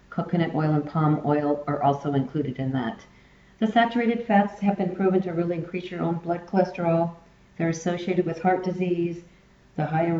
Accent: American